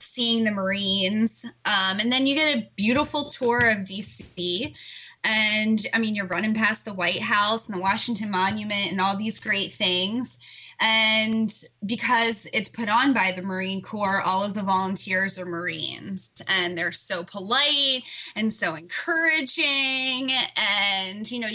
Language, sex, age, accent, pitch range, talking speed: English, female, 10-29, American, 190-245 Hz, 155 wpm